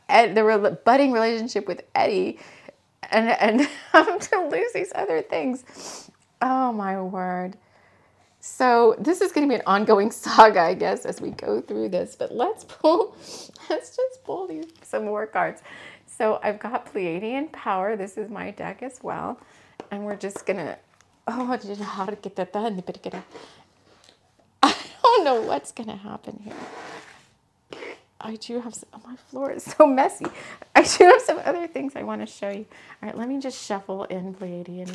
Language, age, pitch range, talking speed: English, 30-49, 190-260 Hz, 160 wpm